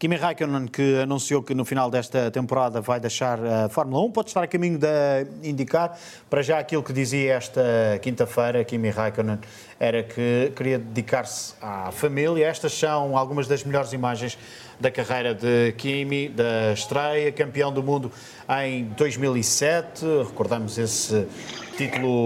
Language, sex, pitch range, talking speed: Portuguese, male, 120-150 Hz, 150 wpm